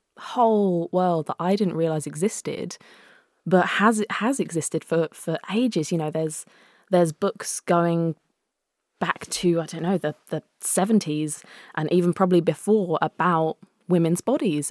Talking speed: 145 wpm